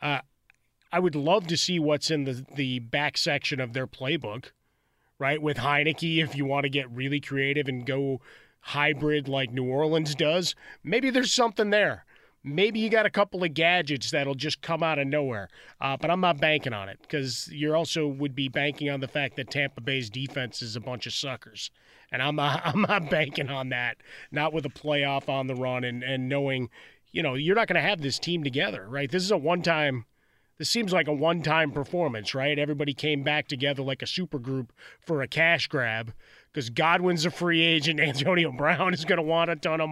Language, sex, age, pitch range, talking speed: English, male, 30-49, 135-165 Hz, 210 wpm